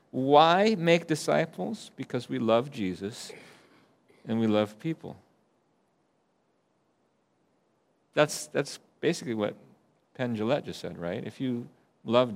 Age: 40-59